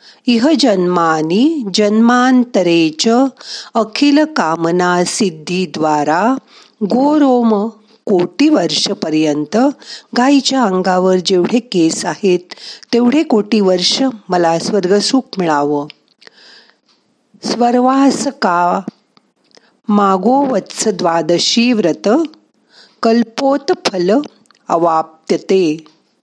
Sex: female